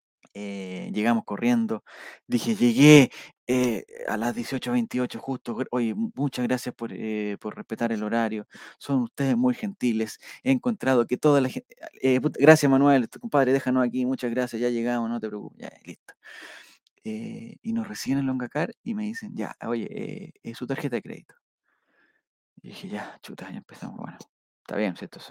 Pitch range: 120-170 Hz